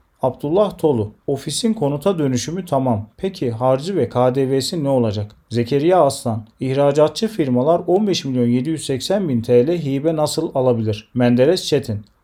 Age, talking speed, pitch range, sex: 40-59, 115 wpm, 120-165 Hz, male